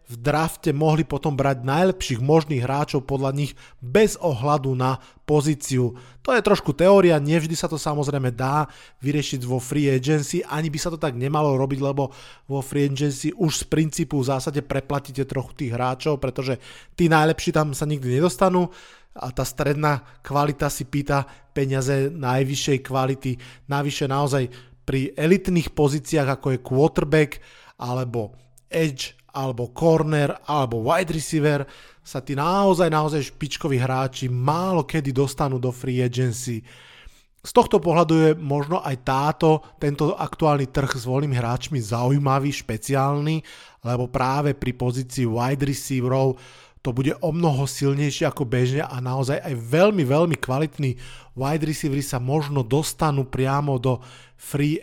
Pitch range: 130-155 Hz